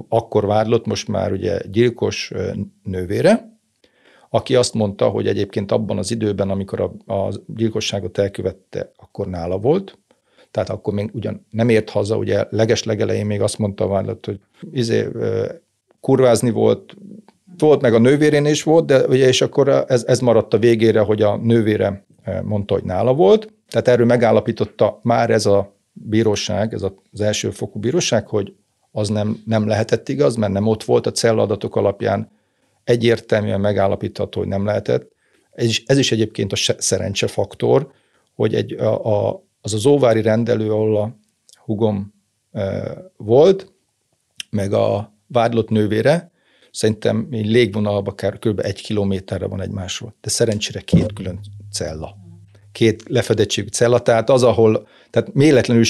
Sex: male